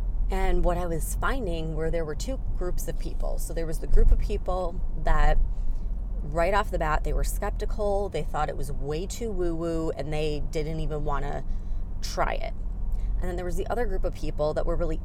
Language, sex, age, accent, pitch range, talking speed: English, female, 30-49, American, 135-170 Hz, 210 wpm